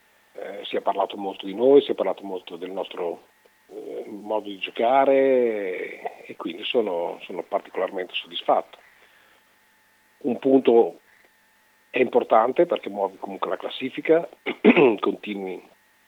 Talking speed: 125 wpm